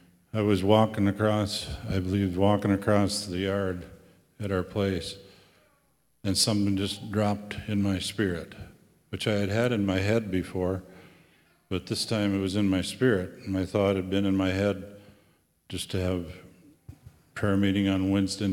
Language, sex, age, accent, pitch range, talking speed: English, male, 50-69, American, 95-110 Hz, 160 wpm